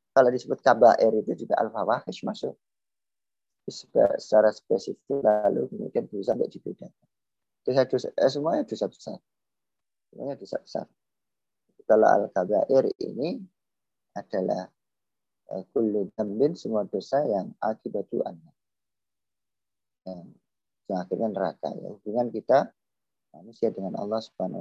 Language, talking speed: Indonesian, 100 wpm